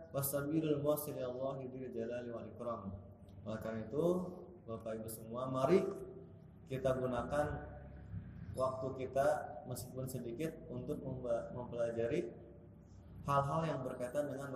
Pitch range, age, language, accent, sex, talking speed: 115-150 Hz, 20-39, Indonesian, native, male, 85 wpm